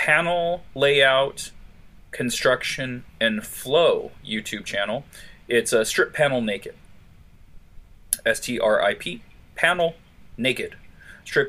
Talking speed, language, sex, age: 85 wpm, English, male, 30-49